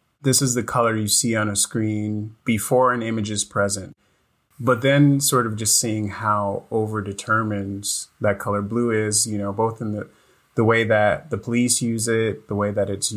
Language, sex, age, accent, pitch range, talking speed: English, male, 30-49, American, 100-115 Hz, 190 wpm